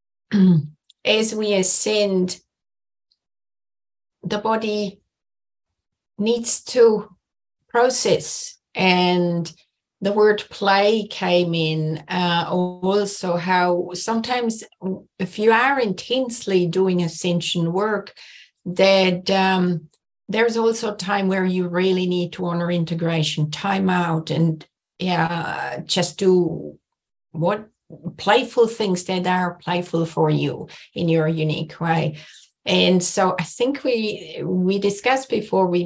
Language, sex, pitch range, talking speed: English, female, 175-210 Hz, 110 wpm